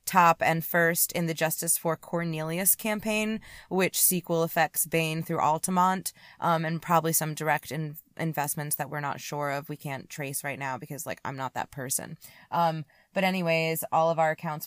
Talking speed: 180 wpm